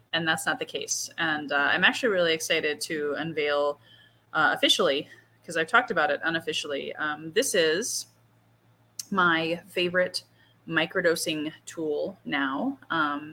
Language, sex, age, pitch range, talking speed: English, female, 30-49, 150-180 Hz, 135 wpm